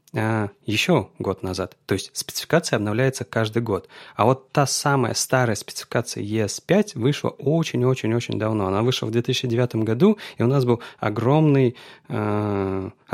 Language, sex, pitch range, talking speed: Russian, male, 105-135 Hz, 130 wpm